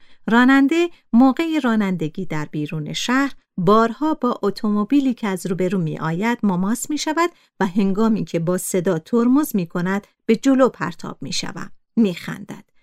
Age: 50-69